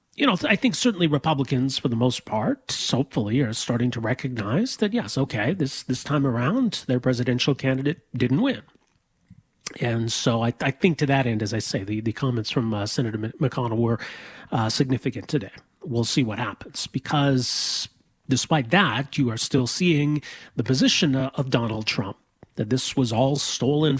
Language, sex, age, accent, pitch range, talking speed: English, male, 40-59, American, 120-150 Hz, 175 wpm